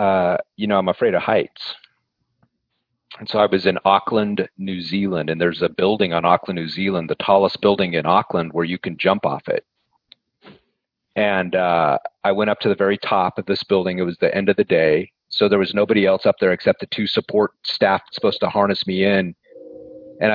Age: 40-59